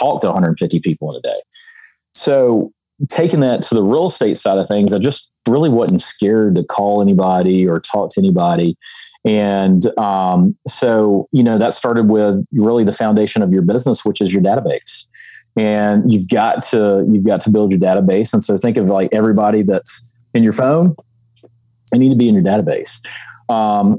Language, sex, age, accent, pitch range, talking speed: English, male, 30-49, American, 95-125 Hz, 190 wpm